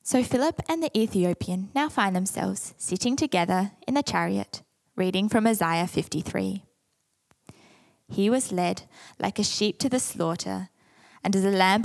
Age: 20-39